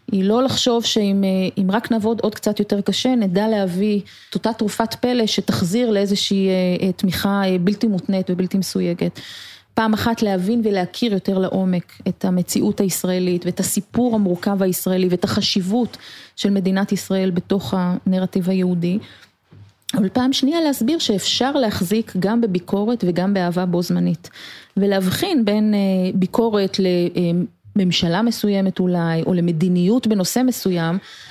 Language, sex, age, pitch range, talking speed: Hebrew, female, 30-49, 185-235 Hz, 130 wpm